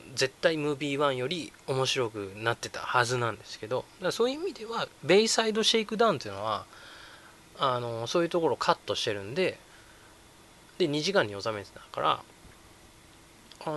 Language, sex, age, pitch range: Japanese, male, 20-39, 105-140 Hz